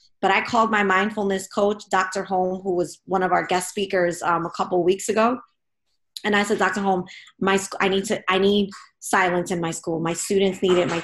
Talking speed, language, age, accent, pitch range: 215 wpm, English, 20-39, American, 175-200 Hz